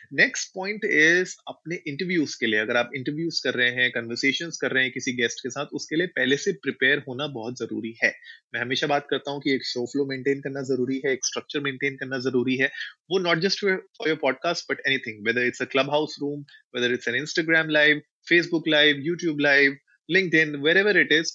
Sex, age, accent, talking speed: male, 30-49, native, 175 wpm